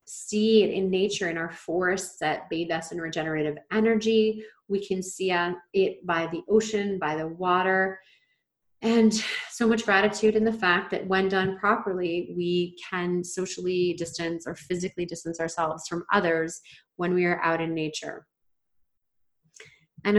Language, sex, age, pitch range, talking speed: English, female, 30-49, 170-210 Hz, 150 wpm